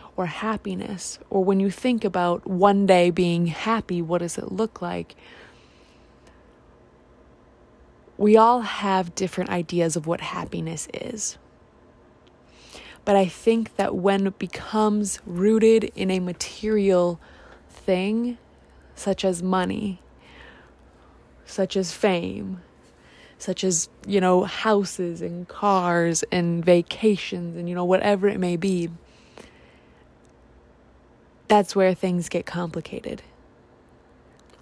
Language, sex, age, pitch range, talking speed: English, female, 20-39, 175-215 Hz, 110 wpm